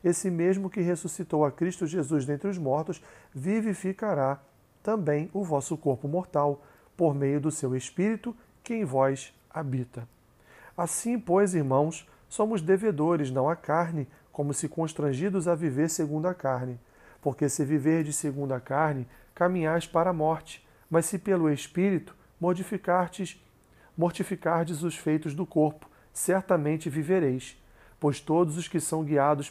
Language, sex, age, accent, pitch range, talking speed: Portuguese, male, 40-59, Brazilian, 140-180 Hz, 140 wpm